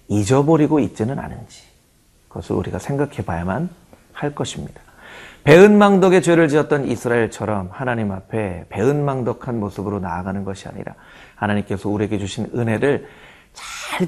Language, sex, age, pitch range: Korean, male, 30-49, 100-145 Hz